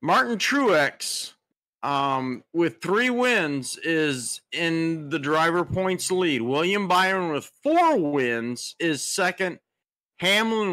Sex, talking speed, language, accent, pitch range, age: male, 110 wpm, English, American, 145-195 Hz, 50-69